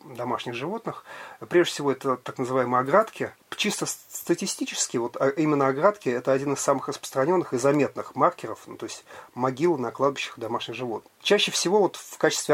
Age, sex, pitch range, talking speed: 40-59, male, 130-160 Hz, 165 wpm